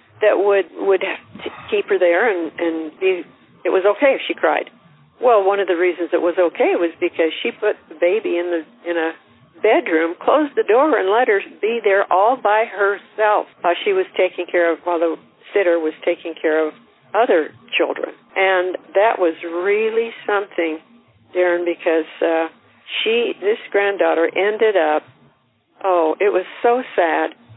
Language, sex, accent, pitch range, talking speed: English, female, American, 170-230 Hz, 170 wpm